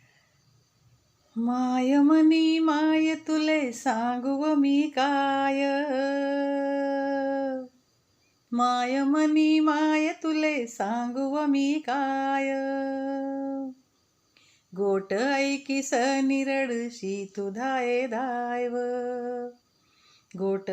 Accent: native